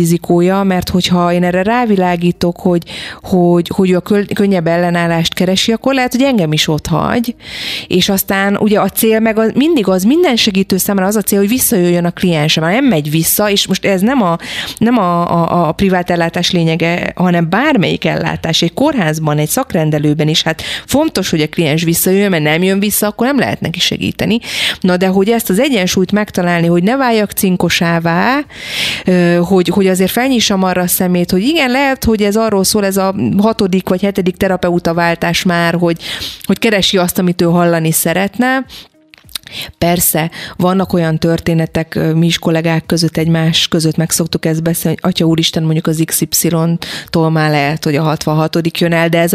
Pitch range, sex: 160-195 Hz, female